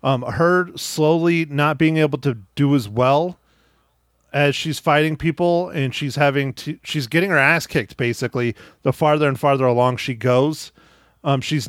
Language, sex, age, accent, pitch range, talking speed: English, male, 30-49, American, 135-160 Hz, 170 wpm